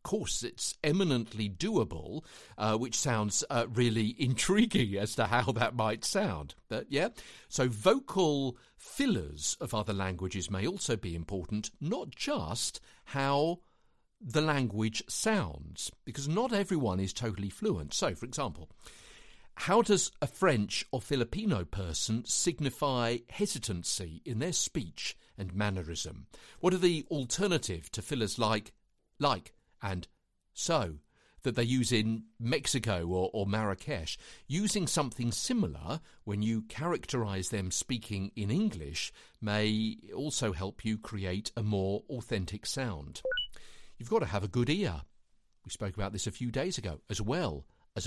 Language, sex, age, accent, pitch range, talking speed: English, male, 50-69, British, 95-140 Hz, 140 wpm